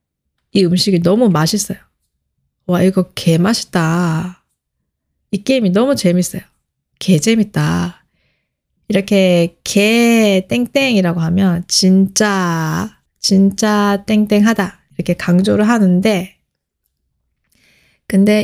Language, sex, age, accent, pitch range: Korean, female, 20-39, native, 175-225 Hz